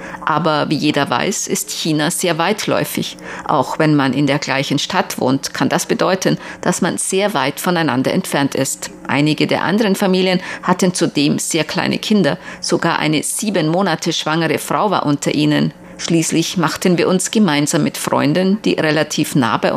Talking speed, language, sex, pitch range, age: 165 wpm, German, female, 155-185 Hz, 50-69